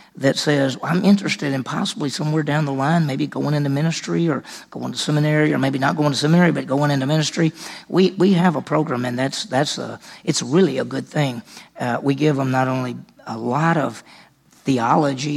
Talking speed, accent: 205 wpm, American